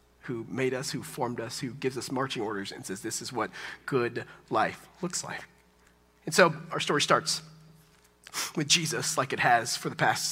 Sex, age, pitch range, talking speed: male, 40-59, 145-185 Hz, 190 wpm